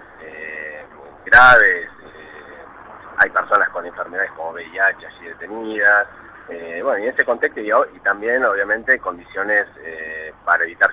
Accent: Argentinian